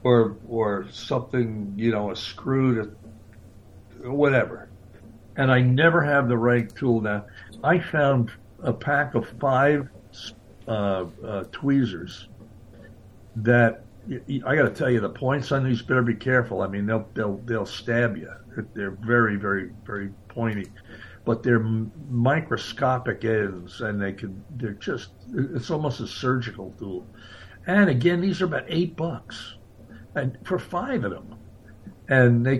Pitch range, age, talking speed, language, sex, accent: 100-120 Hz, 60-79, 145 wpm, English, male, American